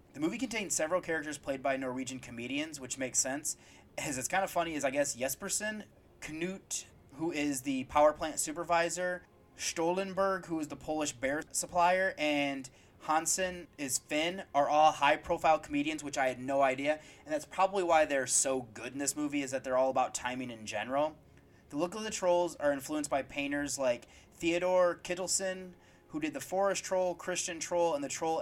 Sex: male